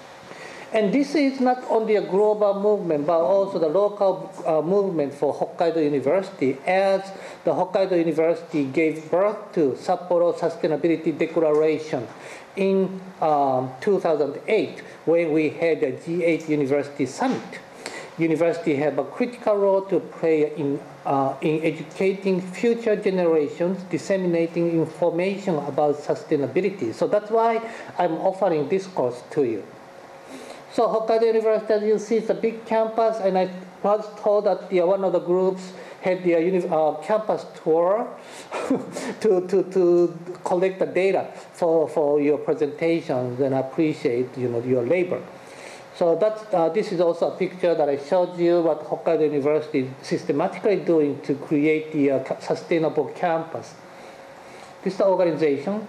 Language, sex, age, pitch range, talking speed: English, male, 50-69, 155-195 Hz, 135 wpm